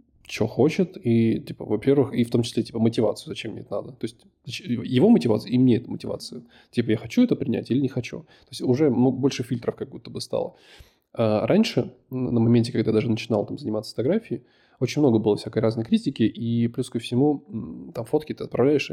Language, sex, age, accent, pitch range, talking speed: Russian, male, 20-39, native, 115-140 Hz, 205 wpm